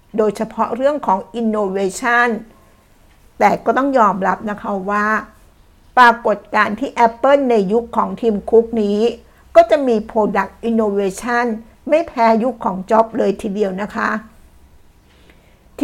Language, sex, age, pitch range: Thai, female, 60-79, 195-235 Hz